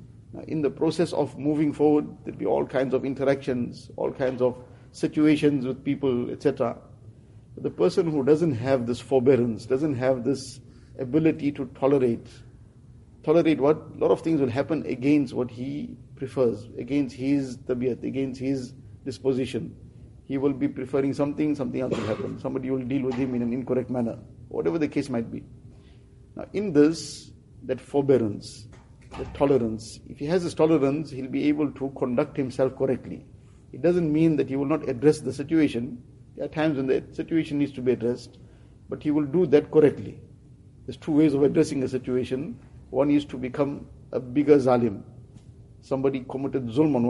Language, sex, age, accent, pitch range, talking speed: English, male, 50-69, Indian, 125-145 Hz, 175 wpm